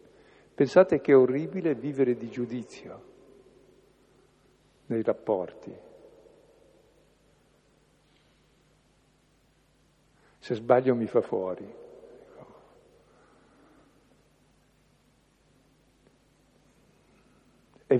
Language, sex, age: Italian, male, 60-79